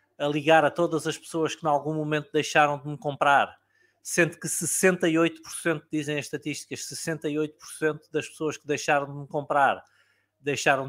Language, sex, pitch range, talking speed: Portuguese, male, 130-155 Hz, 160 wpm